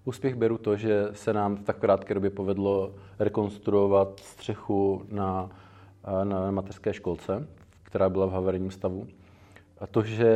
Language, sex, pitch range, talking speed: Czech, male, 100-105 Hz, 145 wpm